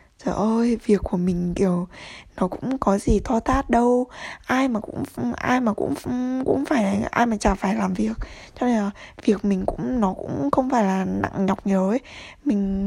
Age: 20-39